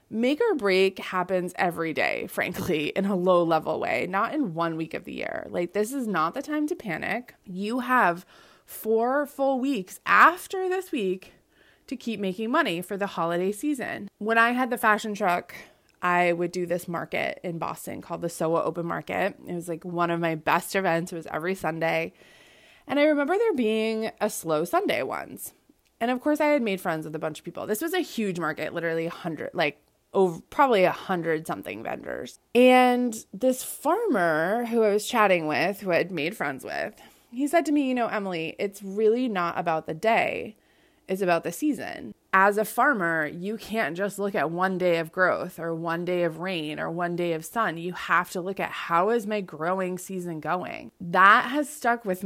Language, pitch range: English, 170-235 Hz